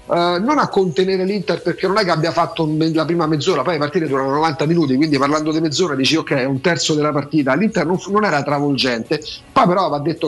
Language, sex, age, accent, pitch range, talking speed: Italian, male, 40-59, native, 150-195 Hz, 230 wpm